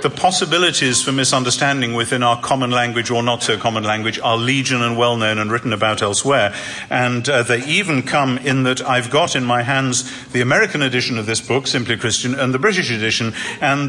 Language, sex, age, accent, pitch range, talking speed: English, male, 50-69, British, 120-140 Hz, 200 wpm